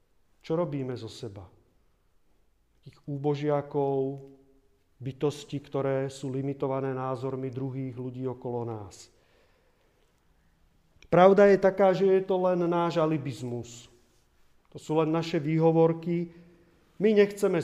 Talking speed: 105 wpm